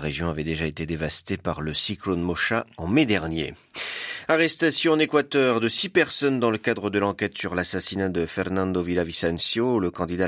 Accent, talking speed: French, 175 wpm